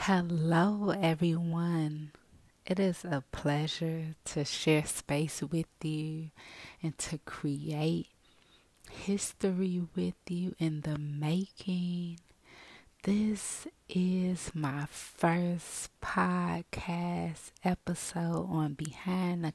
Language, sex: English, female